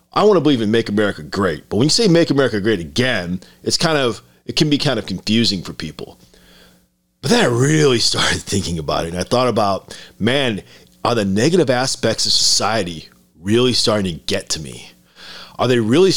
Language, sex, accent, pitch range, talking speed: English, male, American, 75-125 Hz, 205 wpm